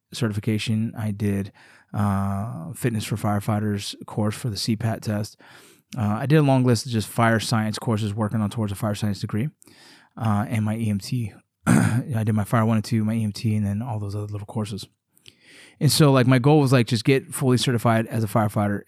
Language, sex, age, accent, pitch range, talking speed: English, male, 20-39, American, 105-120 Hz, 205 wpm